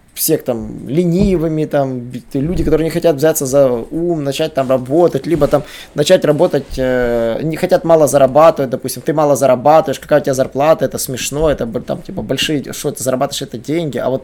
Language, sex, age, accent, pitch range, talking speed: Russian, male, 20-39, native, 130-165 Hz, 185 wpm